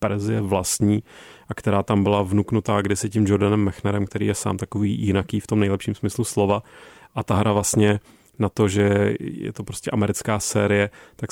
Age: 30-49